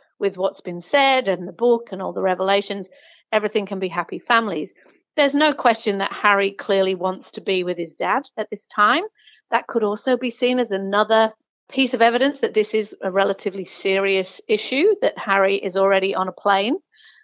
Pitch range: 180-220 Hz